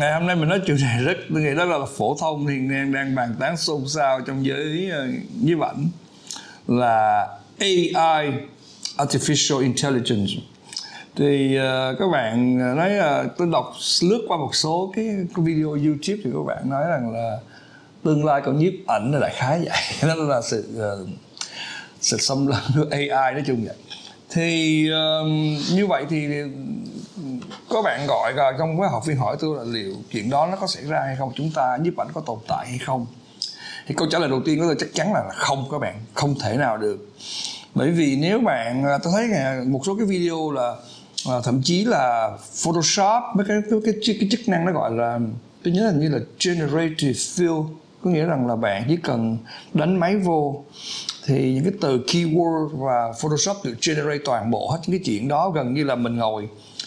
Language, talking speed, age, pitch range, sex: Vietnamese, 195 wpm, 60-79, 130-175 Hz, male